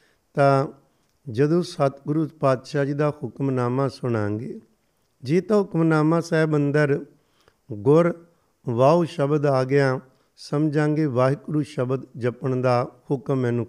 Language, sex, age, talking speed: Punjabi, male, 50-69, 105 wpm